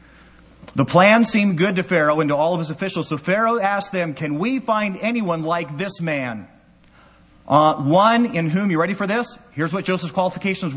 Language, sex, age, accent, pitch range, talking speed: English, male, 40-59, American, 115-190 Hz, 195 wpm